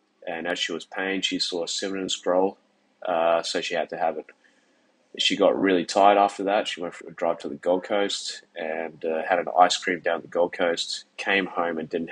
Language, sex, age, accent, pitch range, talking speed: English, male, 20-39, Australian, 85-100 Hz, 230 wpm